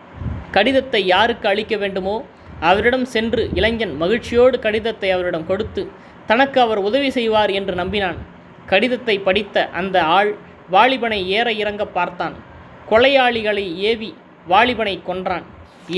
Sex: female